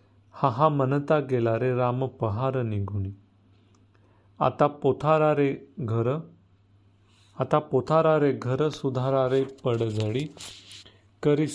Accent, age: native, 40-59